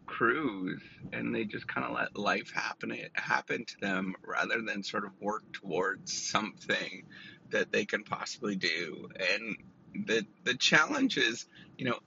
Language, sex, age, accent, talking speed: English, male, 30-49, American, 160 wpm